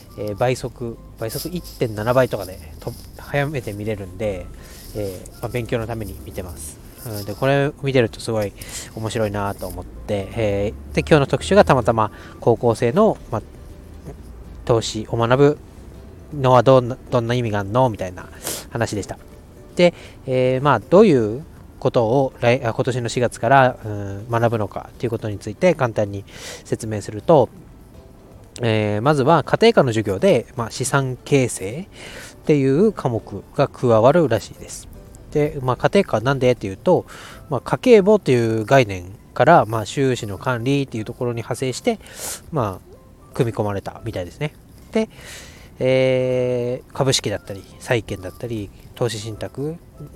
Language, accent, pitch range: Japanese, native, 105-130 Hz